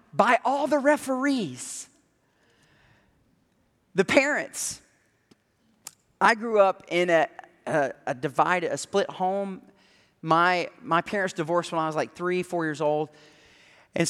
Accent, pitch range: American, 155-220 Hz